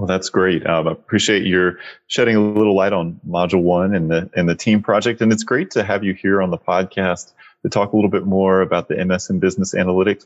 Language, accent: English, American